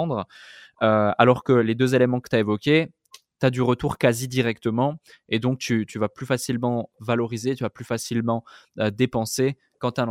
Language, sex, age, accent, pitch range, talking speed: French, male, 20-39, French, 115-135 Hz, 200 wpm